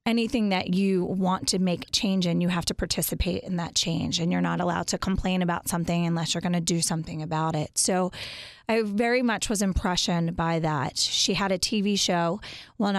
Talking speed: 205 wpm